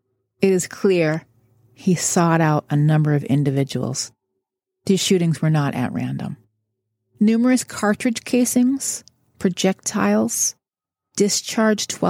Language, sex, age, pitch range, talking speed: English, female, 30-49, 140-190 Hz, 105 wpm